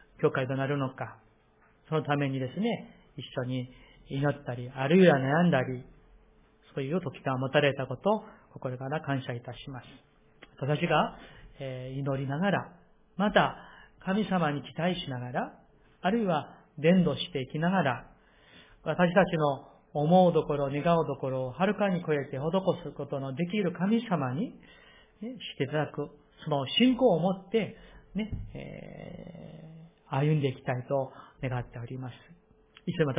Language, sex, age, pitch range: Japanese, male, 40-59, 135-175 Hz